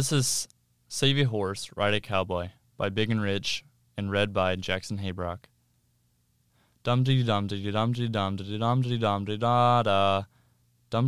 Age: 10-29